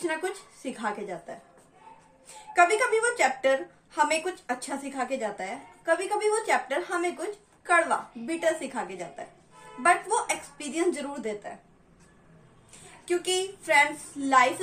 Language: Hindi